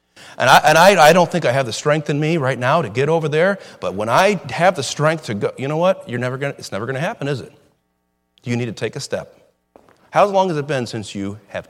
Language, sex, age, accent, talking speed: English, male, 40-59, American, 275 wpm